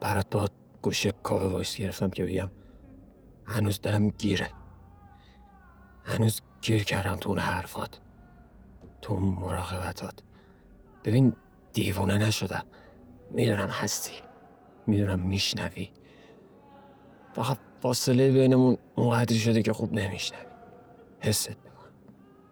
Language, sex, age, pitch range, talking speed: Persian, male, 50-69, 95-105 Hz, 100 wpm